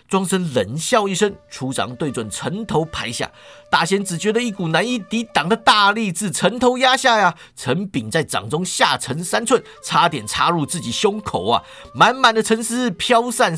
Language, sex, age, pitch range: Chinese, male, 50-69, 165-245 Hz